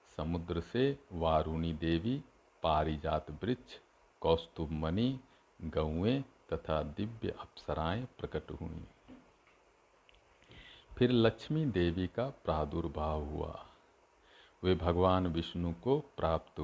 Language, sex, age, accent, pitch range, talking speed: Hindi, male, 50-69, native, 85-105 Hz, 85 wpm